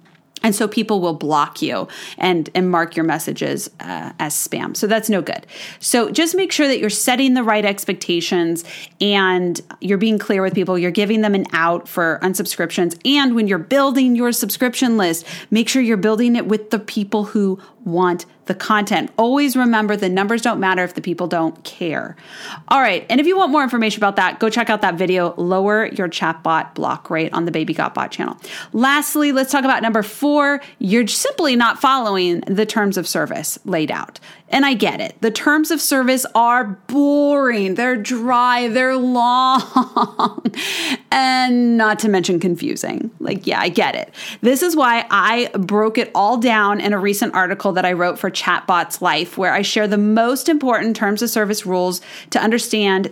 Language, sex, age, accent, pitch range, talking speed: English, female, 30-49, American, 185-240 Hz, 190 wpm